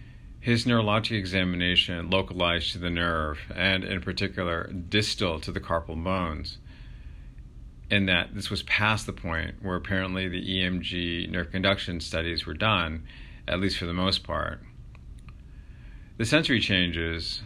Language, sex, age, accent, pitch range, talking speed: English, male, 40-59, American, 85-100 Hz, 140 wpm